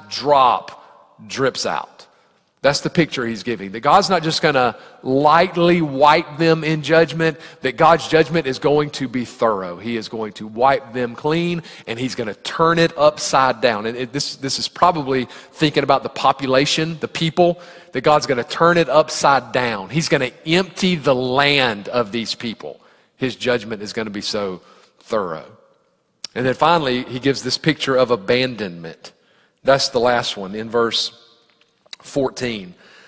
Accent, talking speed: American, 170 wpm